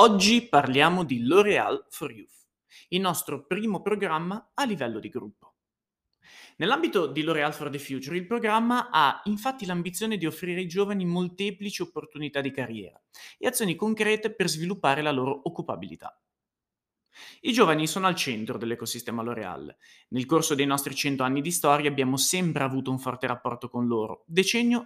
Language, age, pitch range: Italian, 30-49, 140-205 Hz